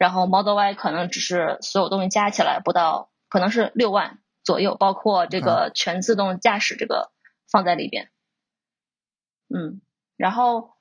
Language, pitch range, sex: Chinese, 185-230 Hz, female